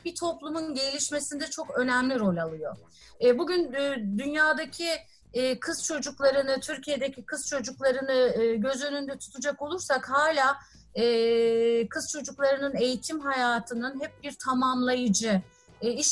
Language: Turkish